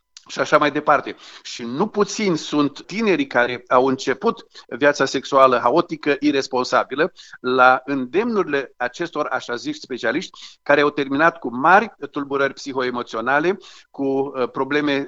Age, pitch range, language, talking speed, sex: 50-69, 135-165 Hz, Romanian, 125 wpm, male